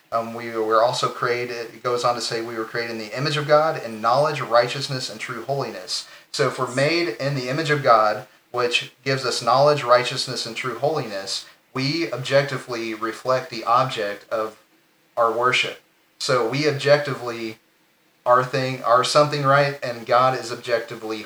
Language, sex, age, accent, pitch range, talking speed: English, male, 30-49, American, 115-135 Hz, 170 wpm